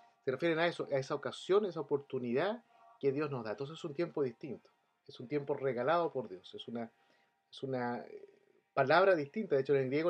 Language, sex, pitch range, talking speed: English, male, 130-180 Hz, 215 wpm